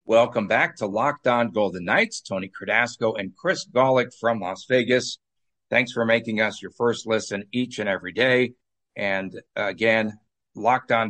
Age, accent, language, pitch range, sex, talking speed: 50-69, American, English, 105-125 Hz, male, 160 wpm